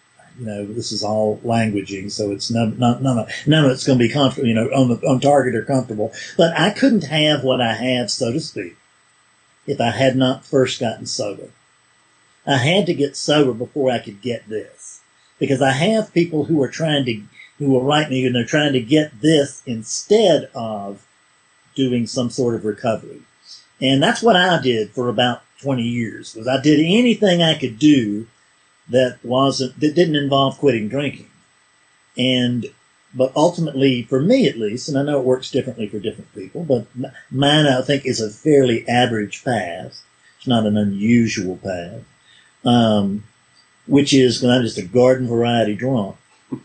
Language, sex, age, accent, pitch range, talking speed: English, male, 50-69, American, 115-145 Hz, 180 wpm